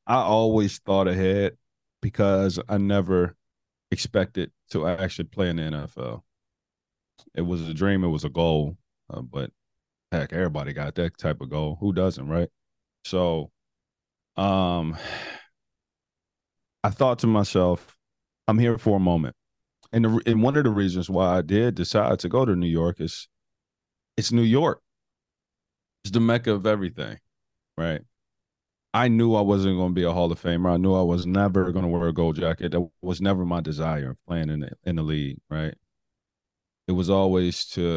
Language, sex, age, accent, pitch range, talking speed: English, male, 30-49, American, 85-100 Hz, 170 wpm